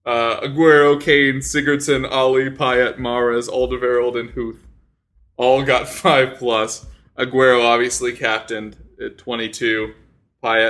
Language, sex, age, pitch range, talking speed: English, male, 20-39, 115-150 Hz, 110 wpm